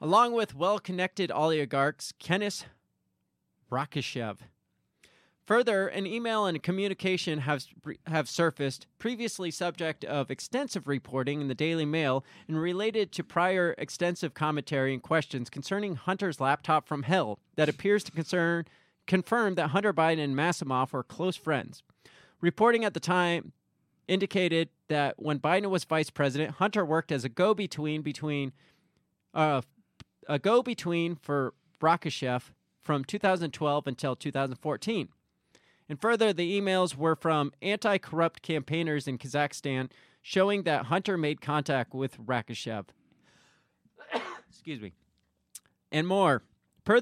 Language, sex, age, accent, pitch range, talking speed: English, male, 30-49, American, 140-185 Hz, 125 wpm